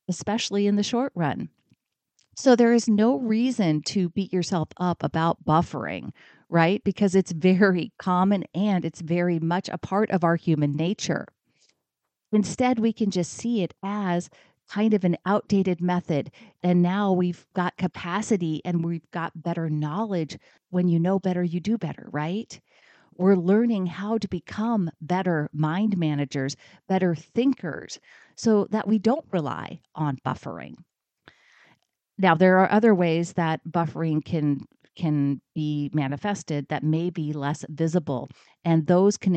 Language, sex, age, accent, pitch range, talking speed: English, female, 40-59, American, 155-200 Hz, 150 wpm